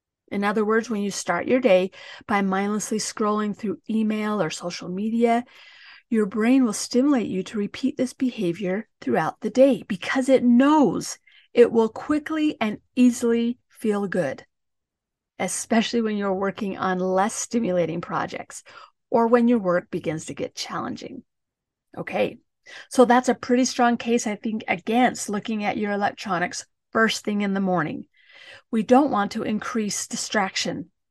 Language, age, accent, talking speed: English, 40-59, American, 150 wpm